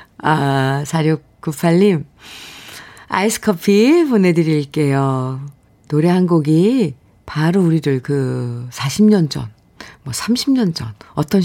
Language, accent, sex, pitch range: Korean, native, female, 155-225 Hz